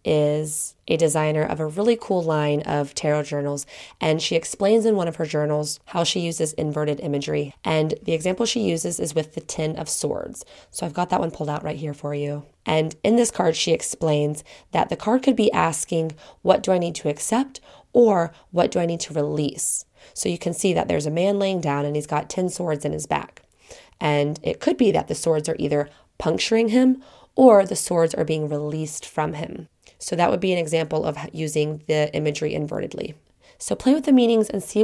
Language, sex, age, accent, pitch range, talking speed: English, female, 20-39, American, 150-190 Hz, 215 wpm